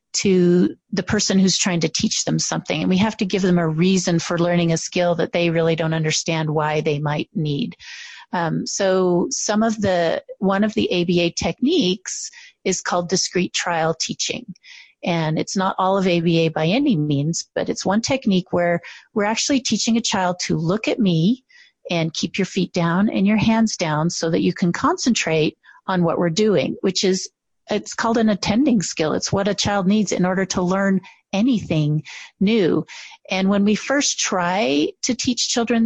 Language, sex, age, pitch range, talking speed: English, female, 40-59, 175-230 Hz, 185 wpm